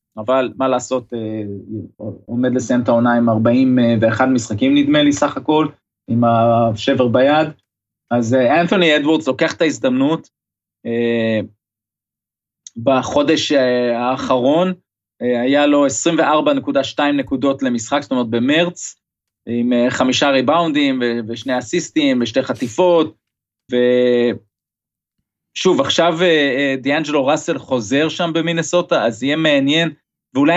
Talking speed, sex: 100 wpm, male